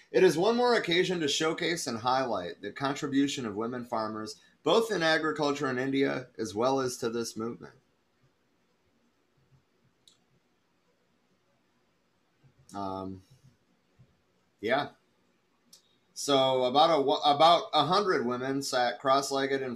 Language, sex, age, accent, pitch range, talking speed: English, male, 30-49, American, 110-140 Hz, 115 wpm